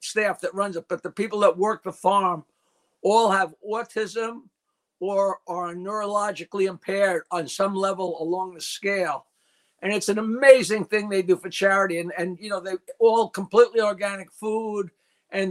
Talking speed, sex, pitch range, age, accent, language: 165 wpm, male, 185-230 Hz, 60-79, American, English